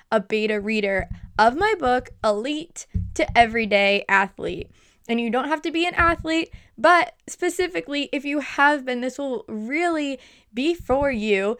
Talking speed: 155 wpm